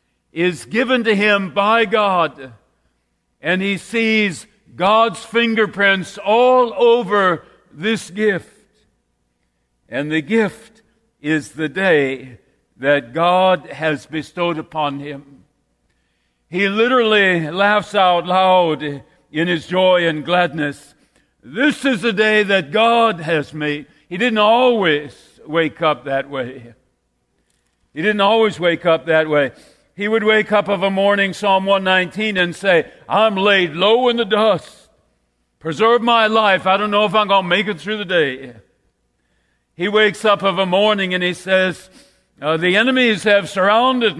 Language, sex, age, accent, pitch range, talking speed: English, male, 60-79, American, 145-215 Hz, 145 wpm